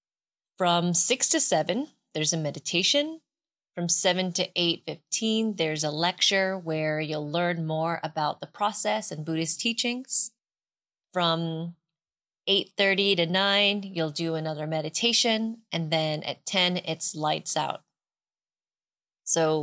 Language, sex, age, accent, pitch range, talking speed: English, female, 30-49, American, 160-195 Hz, 120 wpm